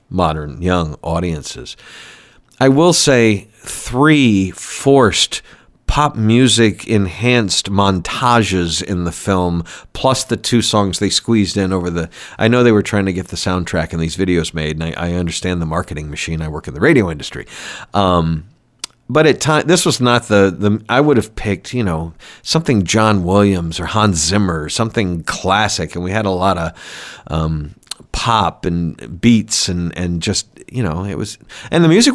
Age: 50-69